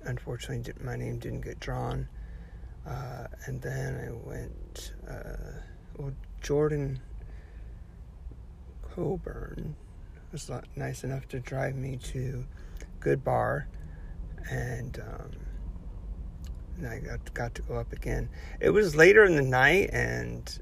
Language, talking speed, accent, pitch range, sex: English, 125 wpm, American, 80-130 Hz, male